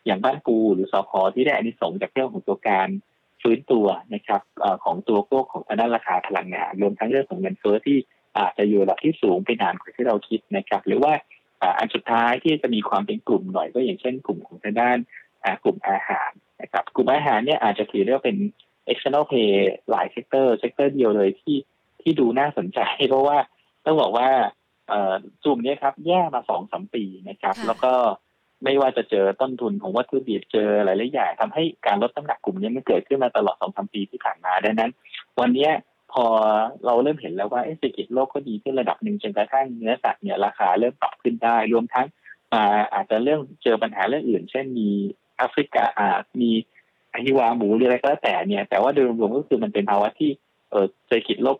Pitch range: 105-135 Hz